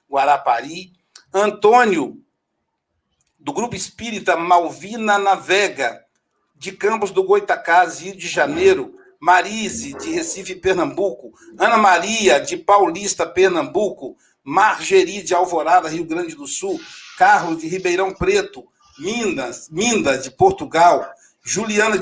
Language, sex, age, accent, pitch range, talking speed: Portuguese, male, 60-79, Brazilian, 180-240 Hz, 105 wpm